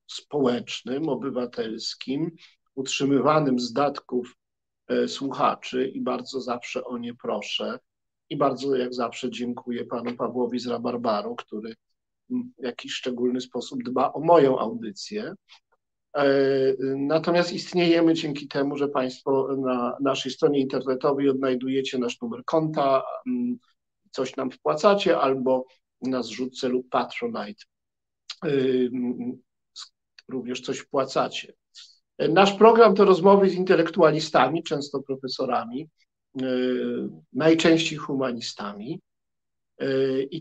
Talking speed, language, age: 100 wpm, Polish, 50-69